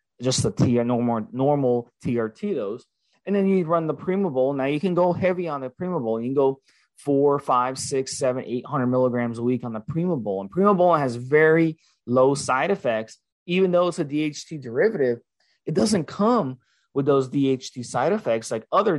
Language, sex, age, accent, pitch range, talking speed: English, male, 20-39, American, 120-155 Hz, 185 wpm